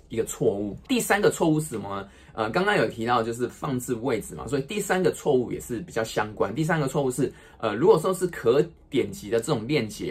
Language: Chinese